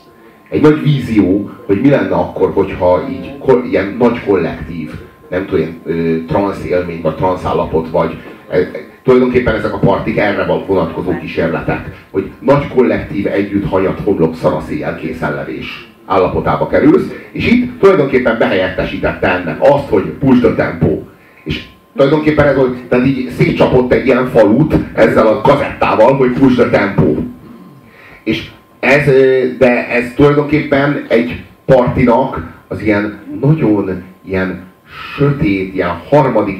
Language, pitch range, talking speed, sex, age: Hungarian, 100-145 Hz, 130 wpm, male, 30-49